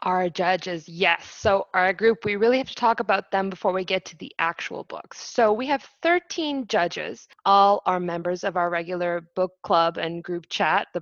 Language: English